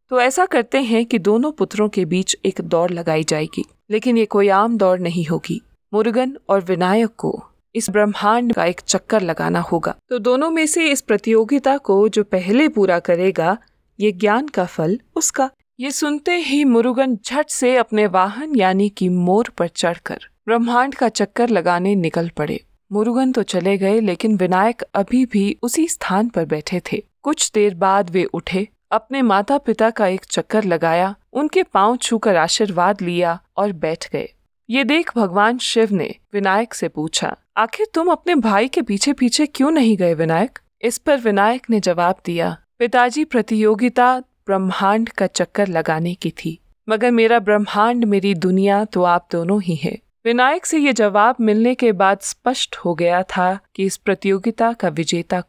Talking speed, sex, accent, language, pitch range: 170 wpm, female, native, Hindi, 185-245 Hz